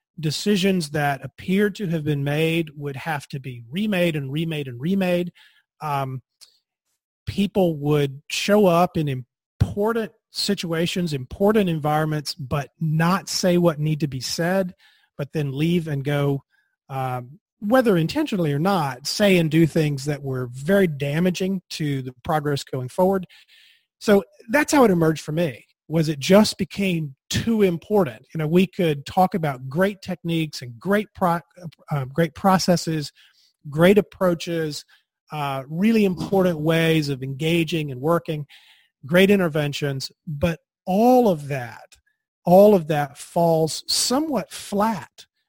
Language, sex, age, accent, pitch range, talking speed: English, male, 30-49, American, 145-190 Hz, 140 wpm